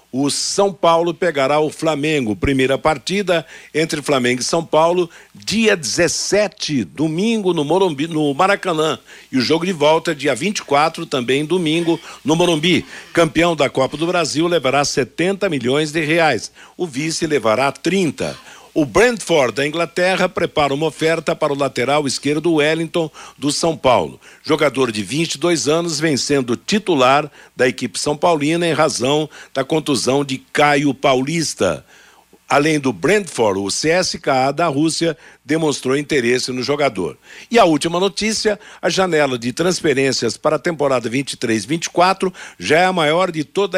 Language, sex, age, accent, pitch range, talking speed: Portuguese, male, 60-79, Brazilian, 140-170 Hz, 145 wpm